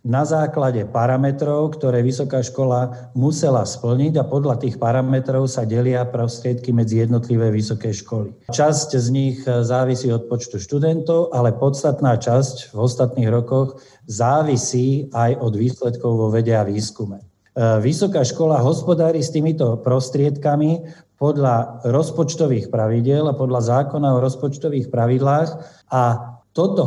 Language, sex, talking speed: Slovak, male, 125 wpm